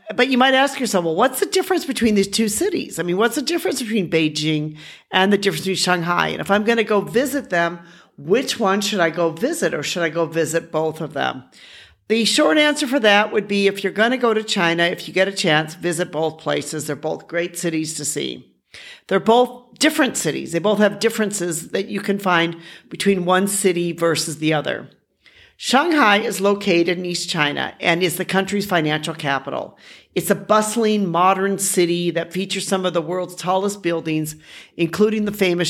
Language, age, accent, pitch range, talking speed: English, 50-69, American, 170-215 Hz, 205 wpm